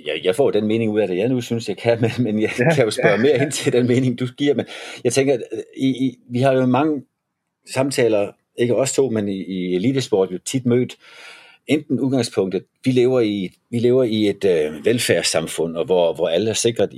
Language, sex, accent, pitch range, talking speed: Danish, male, native, 90-130 Hz, 220 wpm